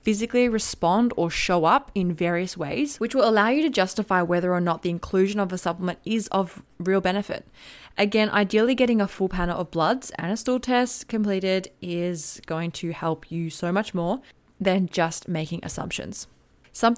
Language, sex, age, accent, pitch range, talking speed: English, female, 20-39, Australian, 175-220 Hz, 185 wpm